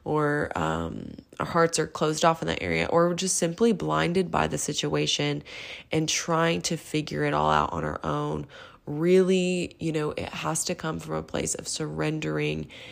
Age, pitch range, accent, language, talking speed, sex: 20-39, 135-165 Hz, American, English, 185 wpm, female